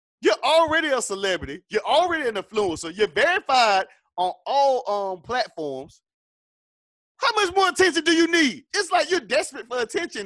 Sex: male